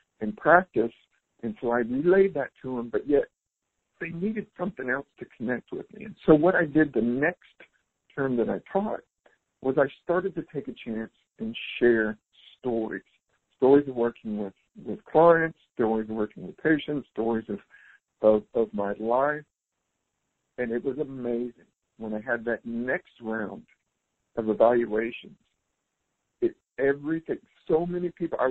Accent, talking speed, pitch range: American, 160 wpm, 115-160 Hz